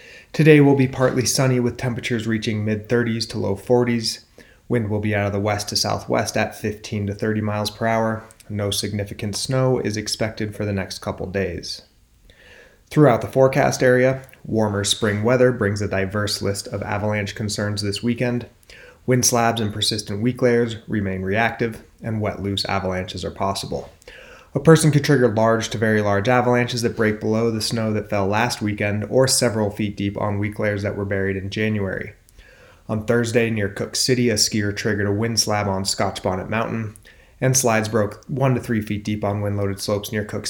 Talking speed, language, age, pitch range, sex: 190 wpm, English, 30-49, 105-120 Hz, male